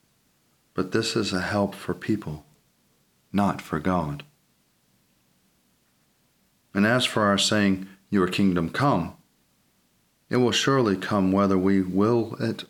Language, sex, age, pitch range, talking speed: English, male, 40-59, 90-105 Hz, 125 wpm